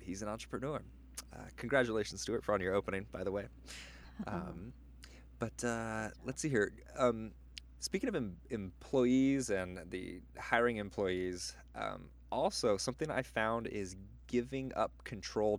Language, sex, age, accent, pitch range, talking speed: English, male, 20-39, American, 90-120 Hz, 140 wpm